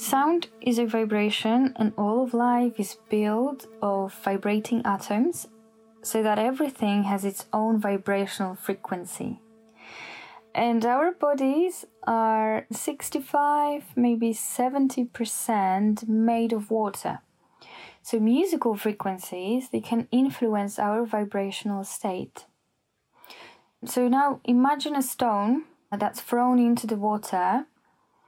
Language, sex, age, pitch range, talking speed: English, female, 10-29, 205-245 Hz, 105 wpm